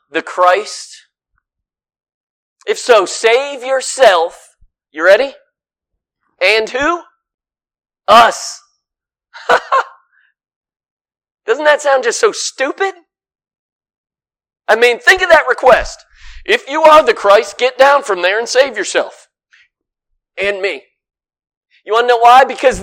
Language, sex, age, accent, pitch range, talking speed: English, male, 40-59, American, 220-315 Hz, 115 wpm